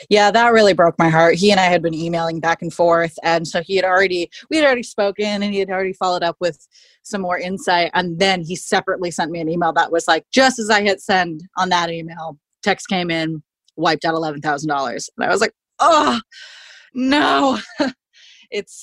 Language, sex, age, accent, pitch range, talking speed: English, female, 20-39, American, 165-195 Hz, 210 wpm